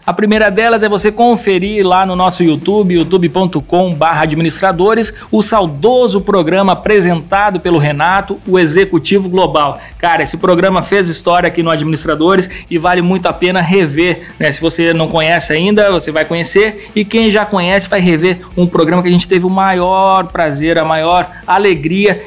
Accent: Brazilian